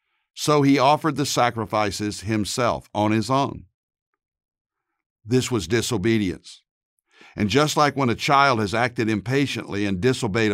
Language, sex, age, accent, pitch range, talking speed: English, male, 60-79, American, 105-135 Hz, 130 wpm